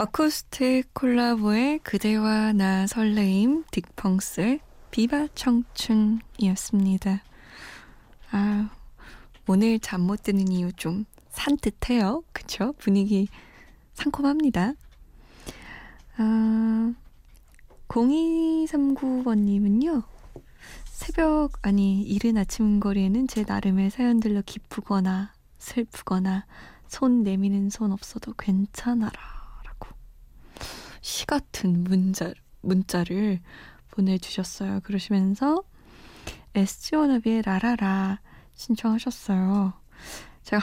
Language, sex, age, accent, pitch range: Korean, female, 20-39, native, 195-245 Hz